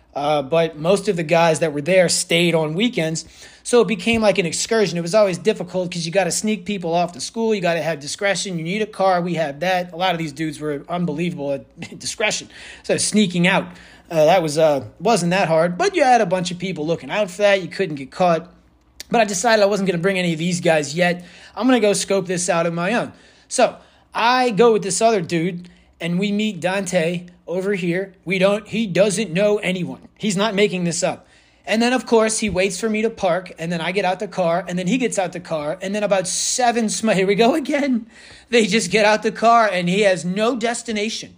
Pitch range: 175-215 Hz